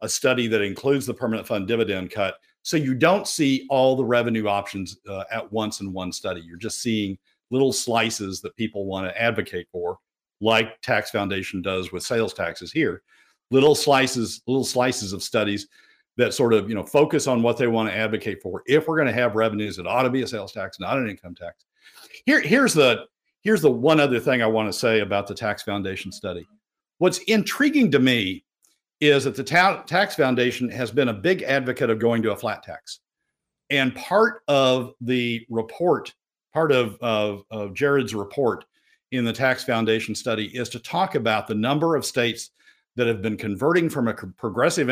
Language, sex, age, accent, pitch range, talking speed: English, male, 50-69, American, 105-140 Hz, 190 wpm